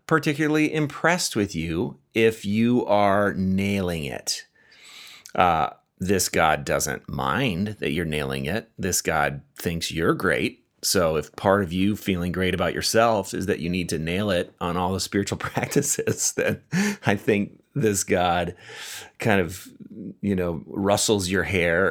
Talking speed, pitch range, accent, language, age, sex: 155 wpm, 95-140 Hz, American, English, 30-49, male